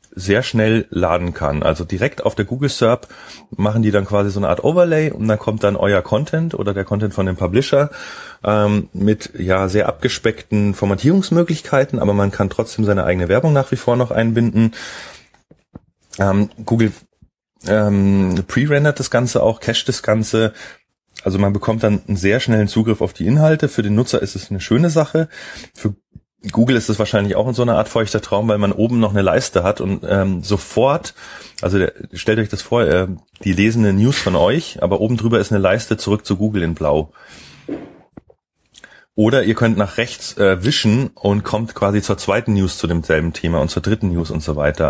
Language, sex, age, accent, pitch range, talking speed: German, male, 30-49, German, 95-115 Hz, 195 wpm